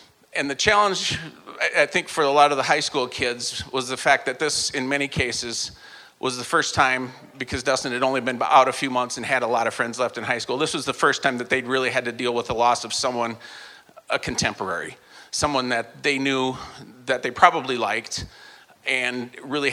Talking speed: 220 wpm